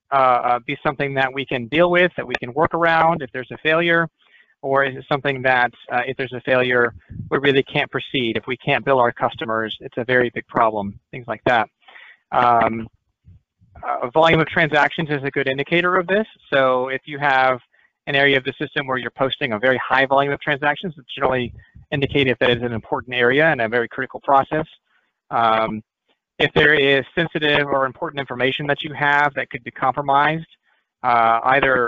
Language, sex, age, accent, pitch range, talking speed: English, male, 30-49, American, 120-145 Hz, 195 wpm